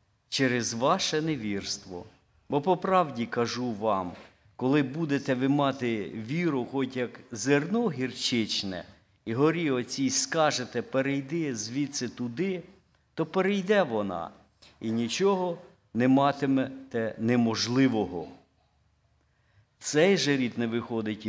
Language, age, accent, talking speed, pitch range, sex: Ukrainian, 50-69, native, 105 wpm, 115-155 Hz, male